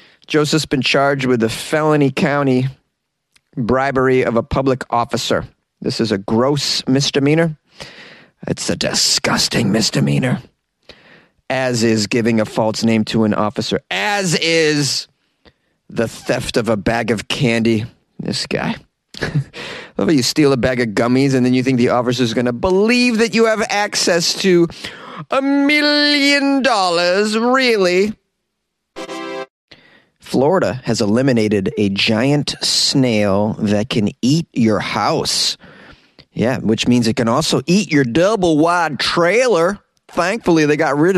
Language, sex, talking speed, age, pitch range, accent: English, male, 130 wpm, 30-49, 115-175 Hz, American